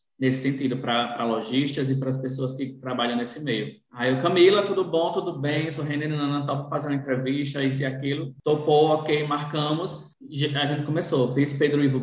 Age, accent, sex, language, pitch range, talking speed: 20-39, Brazilian, male, Portuguese, 120-145 Hz, 200 wpm